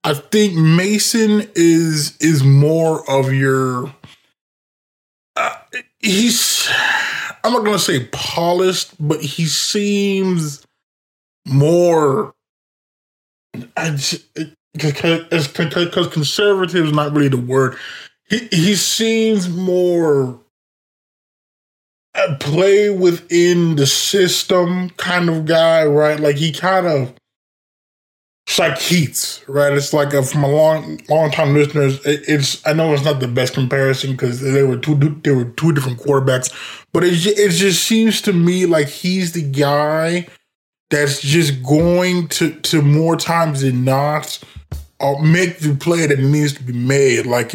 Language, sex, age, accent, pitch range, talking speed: English, male, 20-39, American, 140-175 Hz, 130 wpm